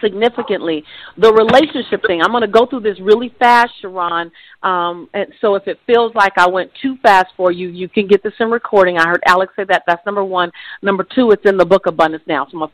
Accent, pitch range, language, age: American, 170-210 Hz, English, 40-59